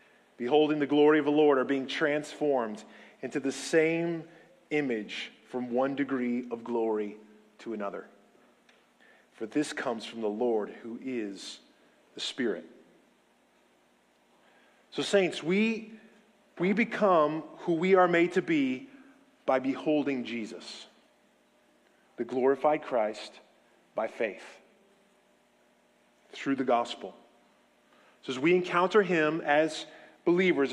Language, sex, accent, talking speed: English, male, American, 115 wpm